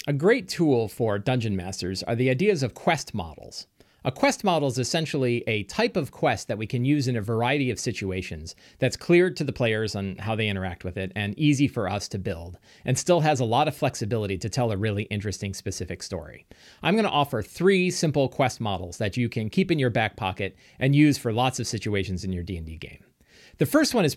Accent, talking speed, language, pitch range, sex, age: American, 225 wpm, English, 100-140 Hz, male, 40-59